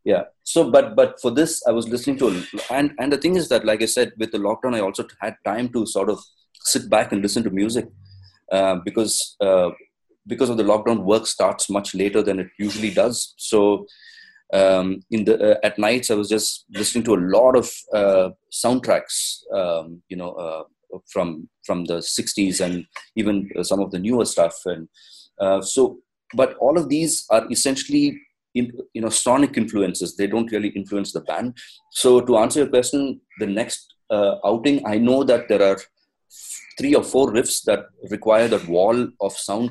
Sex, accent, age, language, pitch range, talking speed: male, Indian, 30-49, English, 95-120 Hz, 190 wpm